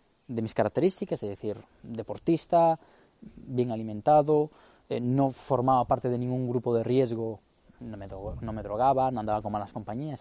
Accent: Spanish